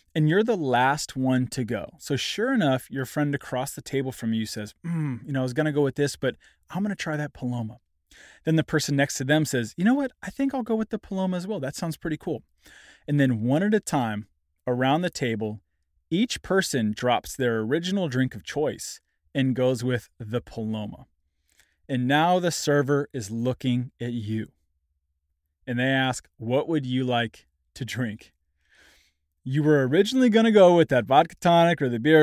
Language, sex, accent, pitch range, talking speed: English, male, American, 110-165 Hz, 205 wpm